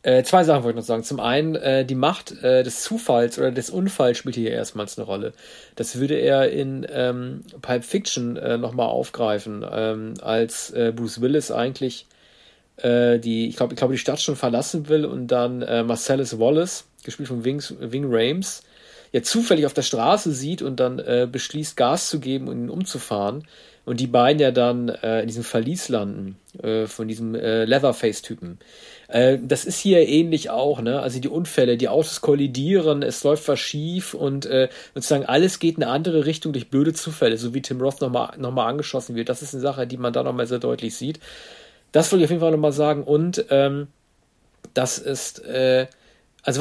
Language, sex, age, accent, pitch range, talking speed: German, male, 40-59, German, 125-155 Hz, 200 wpm